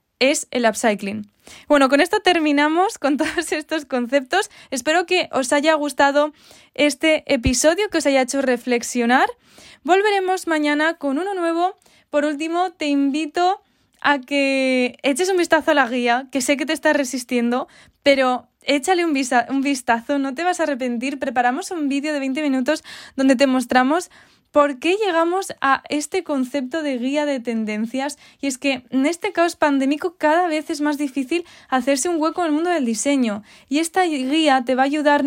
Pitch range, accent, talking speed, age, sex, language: 260-325 Hz, Spanish, 175 wpm, 20-39, female, Spanish